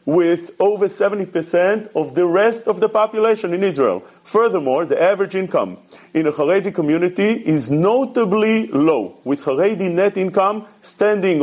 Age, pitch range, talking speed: 40-59, 170-225 Hz, 140 wpm